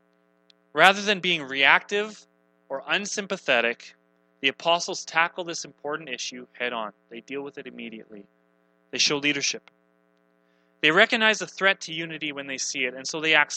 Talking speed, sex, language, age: 160 wpm, male, English, 30-49